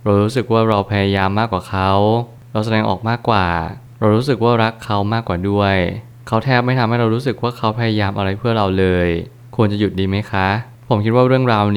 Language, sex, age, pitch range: Thai, male, 20-39, 95-115 Hz